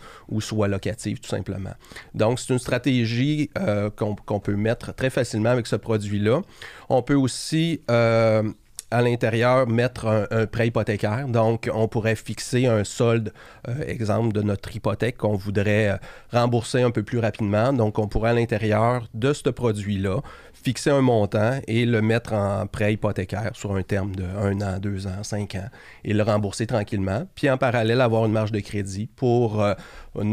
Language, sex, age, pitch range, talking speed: French, male, 30-49, 105-120 Hz, 175 wpm